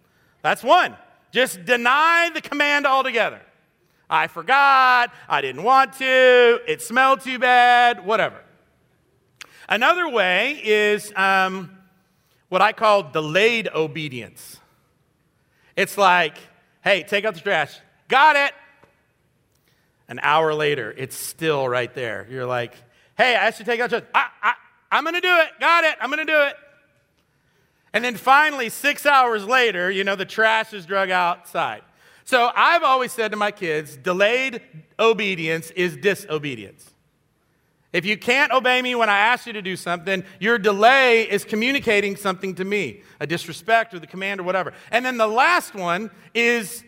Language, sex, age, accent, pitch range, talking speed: English, male, 50-69, American, 180-250 Hz, 155 wpm